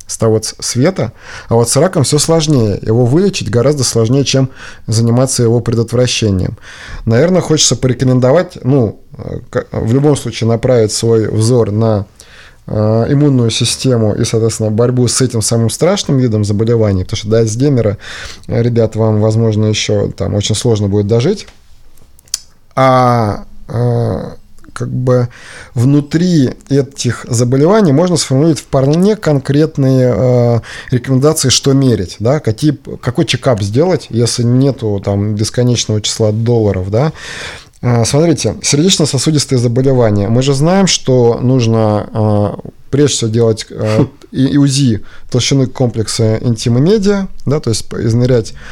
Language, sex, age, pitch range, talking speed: Russian, male, 20-39, 110-135 Hz, 125 wpm